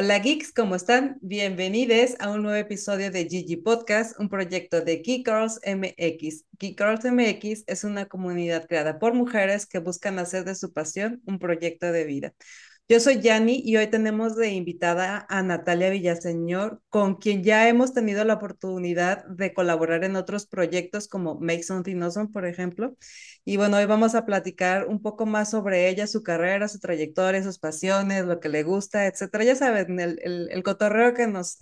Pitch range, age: 180-230 Hz, 30-49